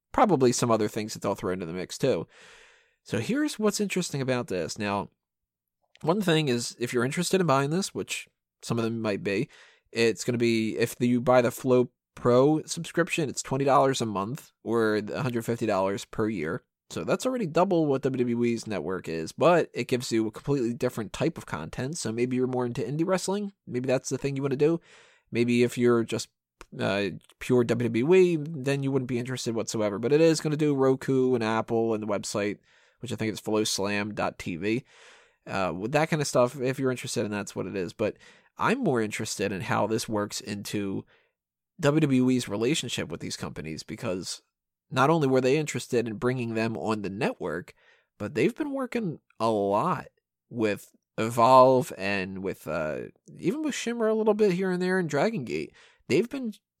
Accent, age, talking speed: American, 20-39, 190 wpm